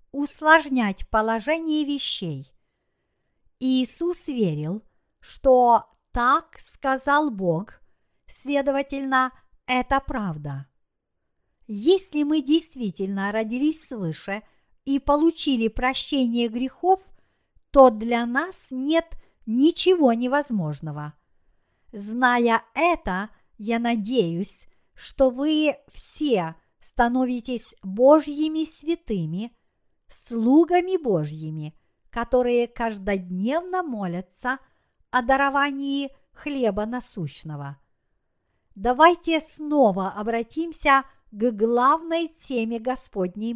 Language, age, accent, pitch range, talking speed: Russian, 50-69, native, 210-290 Hz, 75 wpm